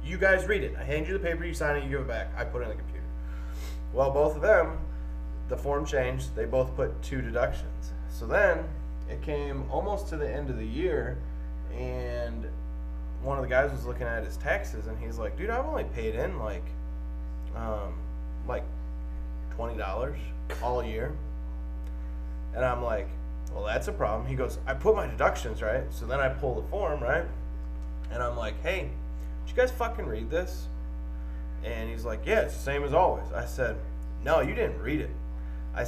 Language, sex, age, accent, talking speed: English, male, 20-39, American, 195 wpm